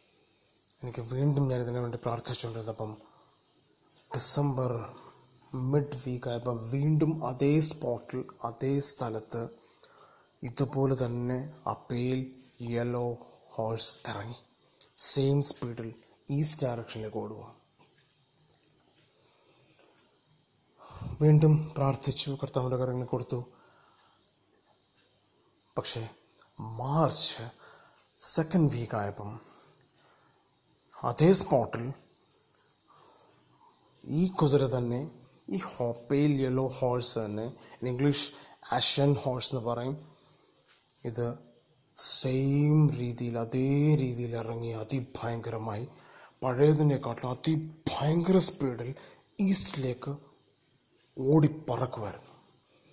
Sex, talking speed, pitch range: male, 60 wpm, 120-145 Hz